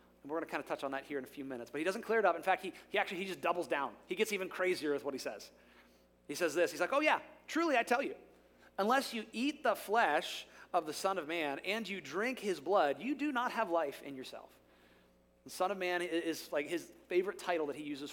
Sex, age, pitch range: male, 30-49, 140-205 Hz